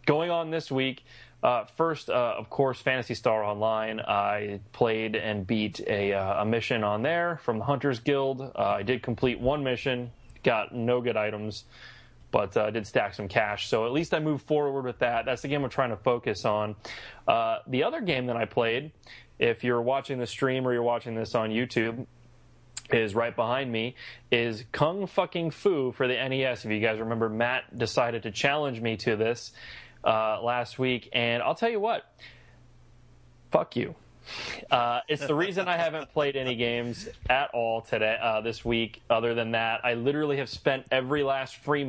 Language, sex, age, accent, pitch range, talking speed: English, male, 20-39, American, 115-135 Hz, 190 wpm